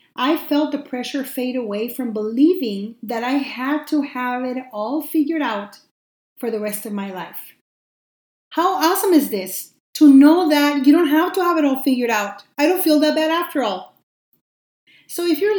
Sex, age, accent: female, 40-59, American